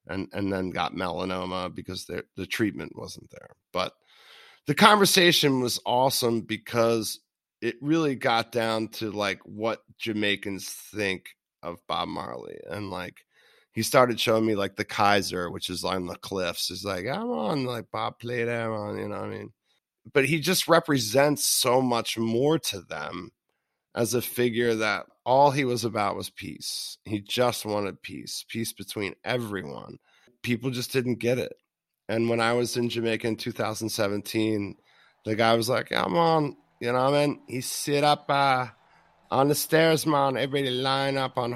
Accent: American